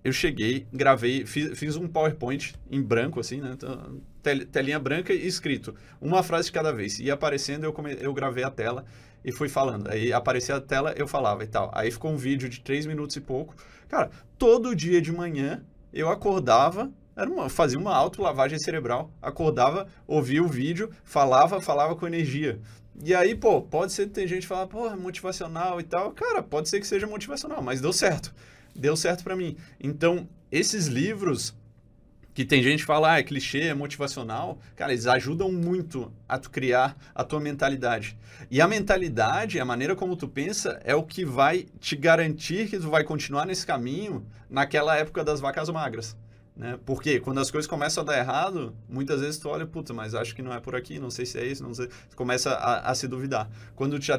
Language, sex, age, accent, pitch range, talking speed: Portuguese, male, 20-39, Brazilian, 130-165 Hz, 200 wpm